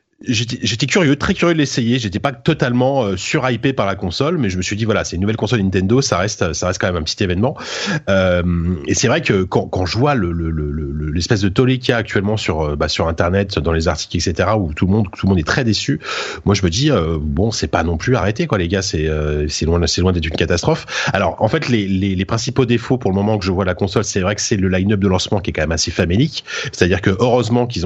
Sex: male